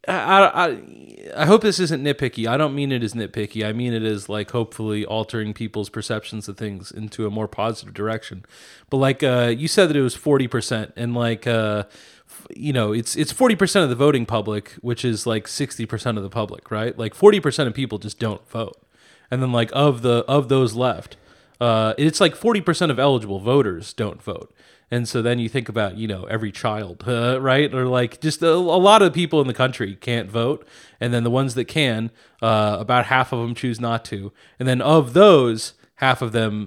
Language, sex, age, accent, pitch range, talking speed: English, male, 30-49, American, 110-145 Hz, 220 wpm